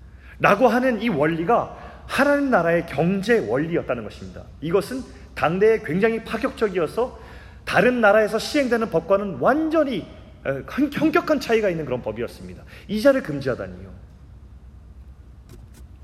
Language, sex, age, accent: Korean, male, 30-49, native